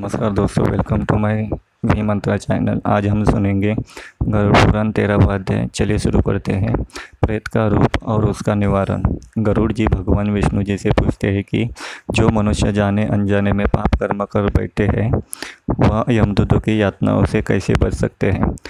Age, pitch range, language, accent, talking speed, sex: 20-39, 100-110 Hz, Hindi, native, 165 wpm, male